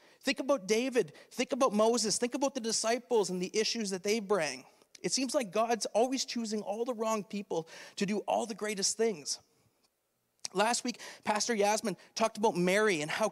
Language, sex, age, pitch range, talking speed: English, male, 40-59, 185-225 Hz, 185 wpm